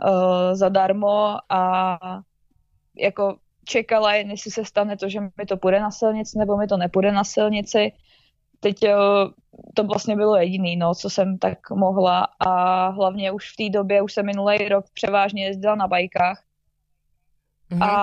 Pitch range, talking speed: 195-210 Hz, 145 wpm